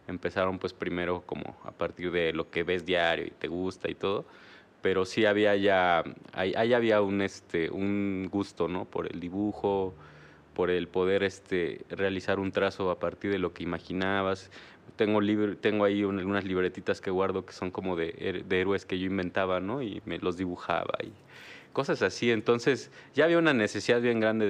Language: Spanish